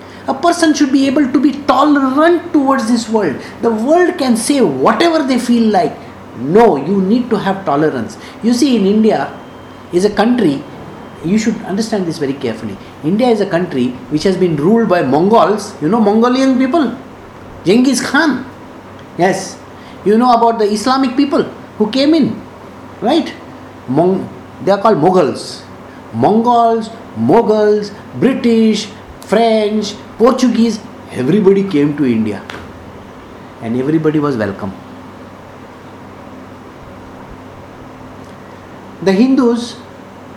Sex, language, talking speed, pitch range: male, English, 125 wpm, 160-245 Hz